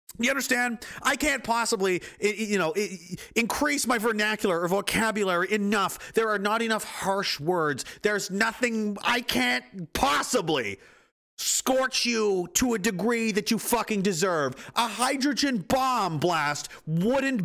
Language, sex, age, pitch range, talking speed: English, male, 40-59, 200-250 Hz, 130 wpm